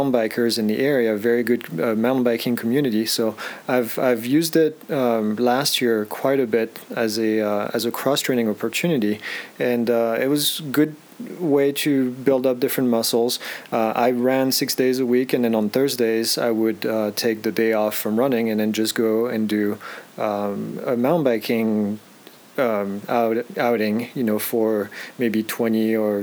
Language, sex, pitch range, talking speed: English, male, 110-125 Hz, 180 wpm